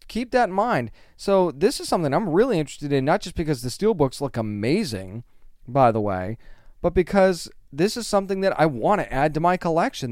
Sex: male